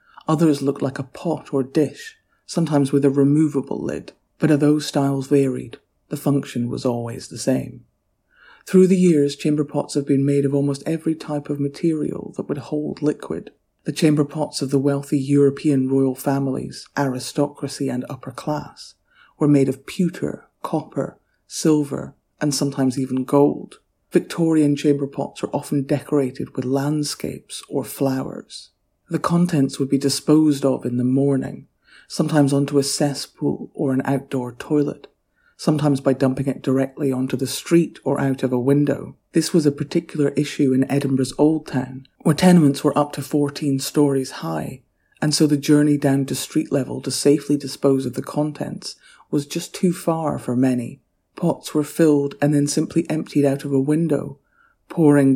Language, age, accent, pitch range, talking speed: English, 50-69, British, 135-150 Hz, 165 wpm